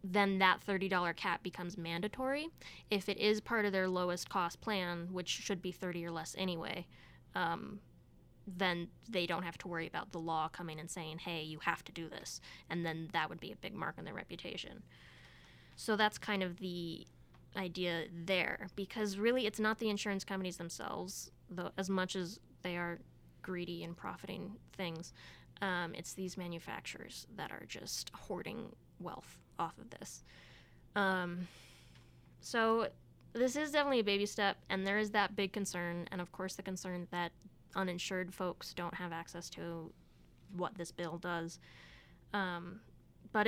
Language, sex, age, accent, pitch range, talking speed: English, female, 20-39, American, 170-200 Hz, 165 wpm